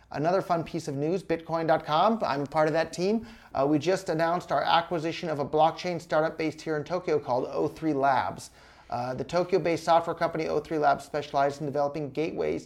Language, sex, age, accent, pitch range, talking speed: English, male, 30-49, American, 135-160 Hz, 185 wpm